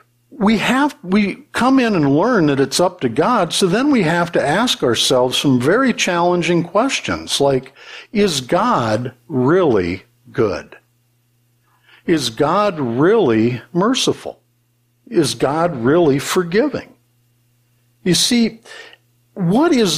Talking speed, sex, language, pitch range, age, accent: 120 wpm, male, English, 120-170 Hz, 60-79, American